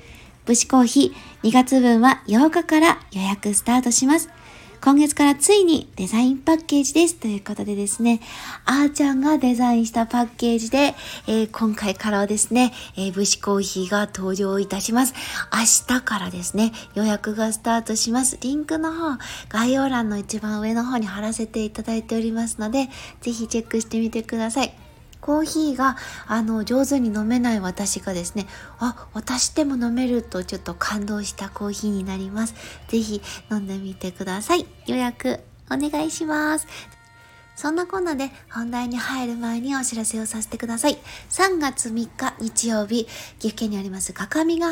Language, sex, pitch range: Japanese, female, 210-270 Hz